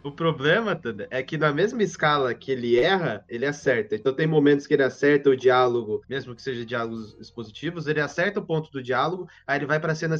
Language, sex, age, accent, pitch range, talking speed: Portuguese, male, 20-39, Brazilian, 135-170 Hz, 210 wpm